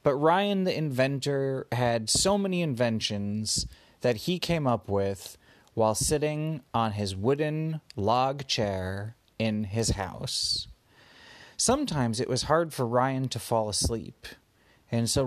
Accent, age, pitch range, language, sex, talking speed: American, 30-49, 105-150 Hz, English, male, 135 wpm